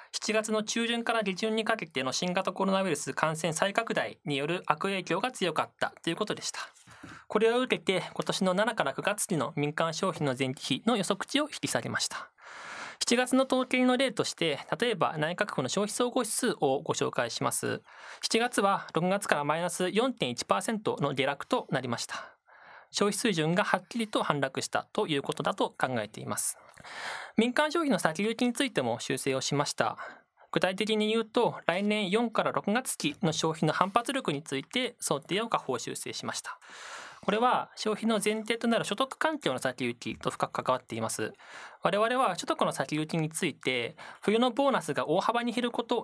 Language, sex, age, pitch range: Japanese, male, 20-39, 160-235 Hz